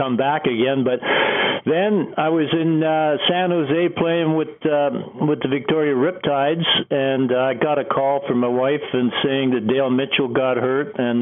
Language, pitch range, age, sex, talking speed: English, 130-155 Hz, 60-79, male, 185 wpm